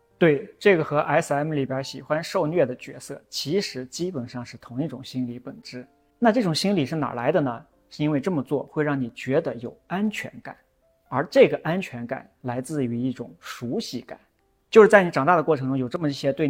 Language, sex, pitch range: Chinese, male, 125-155 Hz